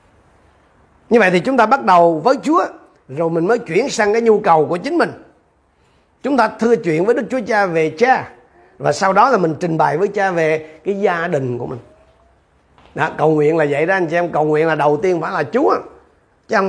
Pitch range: 150-205 Hz